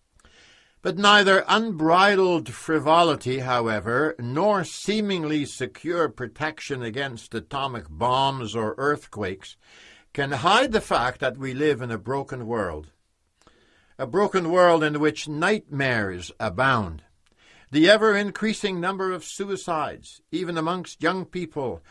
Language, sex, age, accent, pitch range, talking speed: English, male, 60-79, American, 125-190 Hz, 110 wpm